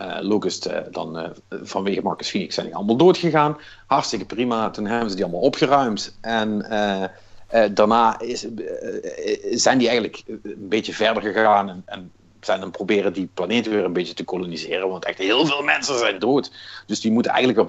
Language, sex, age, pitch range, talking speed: Dutch, male, 50-69, 100-130 Hz, 205 wpm